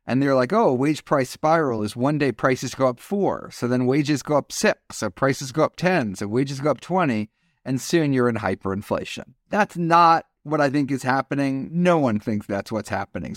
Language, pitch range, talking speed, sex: English, 115-145 Hz, 215 wpm, male